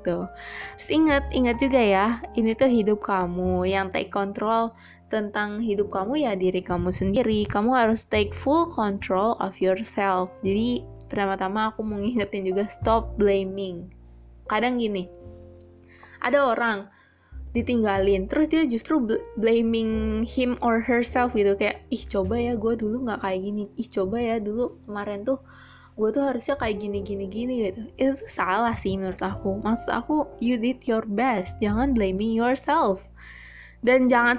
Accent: native